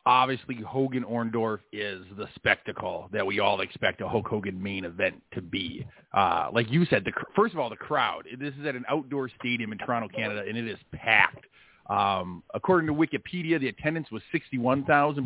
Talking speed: 180 wpm